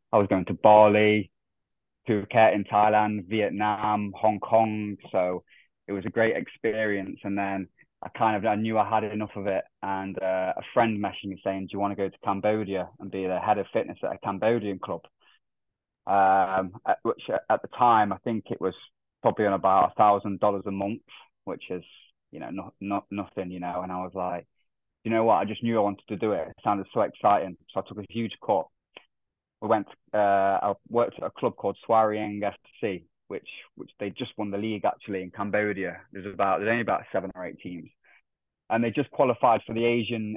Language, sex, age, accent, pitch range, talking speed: English, male, 20-39, British, 95-110 Hz, 210 wpm